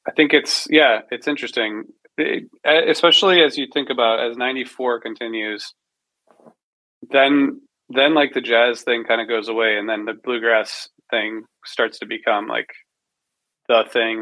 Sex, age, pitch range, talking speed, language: male, 30-49, 110-125 Hz, 155 wpm, English